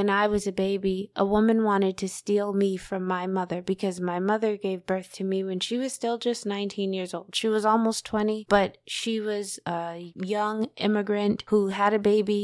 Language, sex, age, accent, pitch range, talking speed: English, female, 20-39, American, 185-210 Hz, 205 wpm